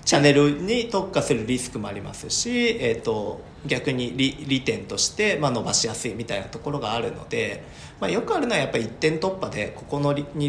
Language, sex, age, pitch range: Japanese, male, 40-59, 115-155 Hz